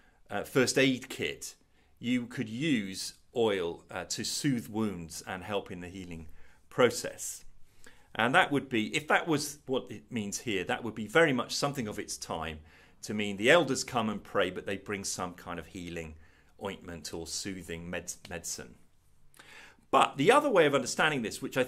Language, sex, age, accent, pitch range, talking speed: English, male, 40-59, British, 95-125 Hz, 180 wpm